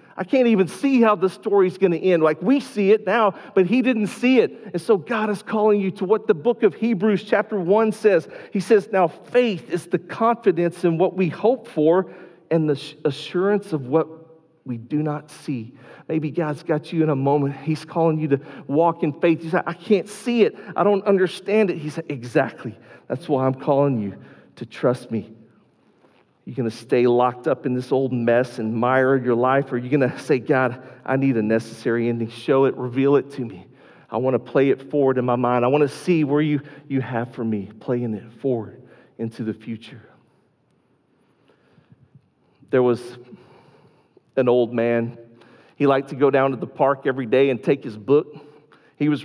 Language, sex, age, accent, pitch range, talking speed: English, male, 40-59, American, 125-185 Hz, 205 wpm